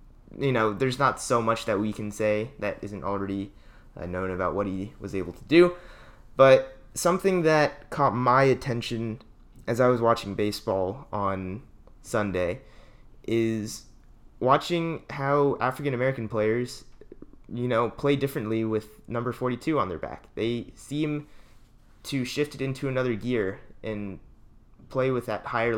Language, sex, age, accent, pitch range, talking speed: English, male, 20-39, American, 100-125 Hz, 145 wpm